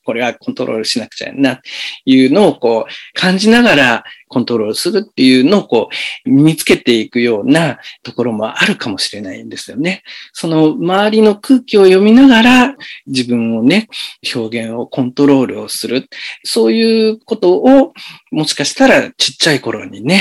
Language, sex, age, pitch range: Japanese, male, 50-69, 145-230 Hz